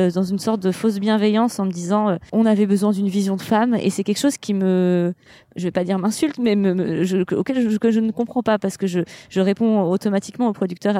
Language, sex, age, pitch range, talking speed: French, female, 20-39, 180-215 Hz, 250 wpm